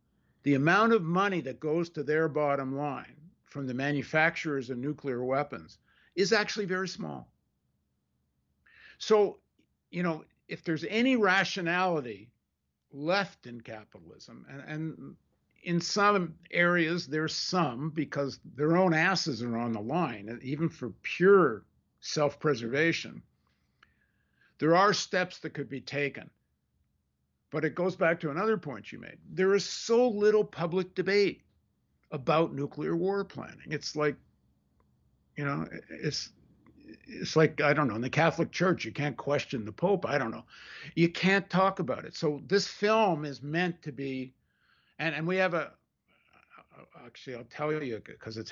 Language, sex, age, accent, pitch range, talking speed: English, male, 60-79, American, 130-180 Hz, 150 wpm